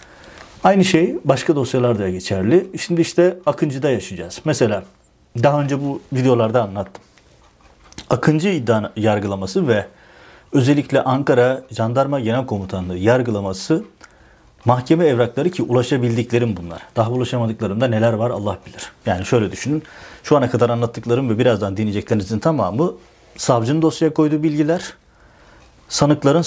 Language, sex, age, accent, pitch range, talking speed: Turkish, male, 40-59, native, 110-145 Hz, 120 wpm